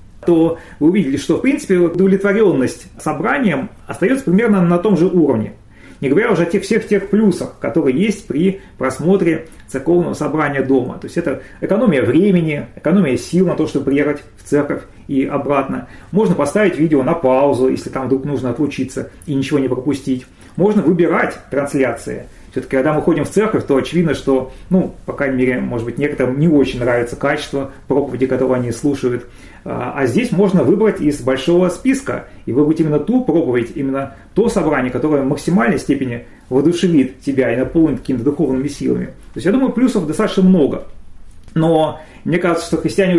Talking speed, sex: 170 wpm, male